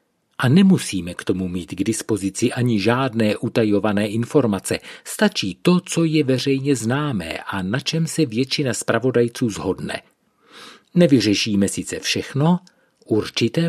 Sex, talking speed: male, 125 wpm